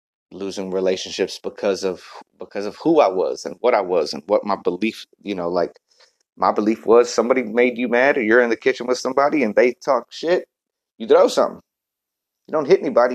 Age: 30-49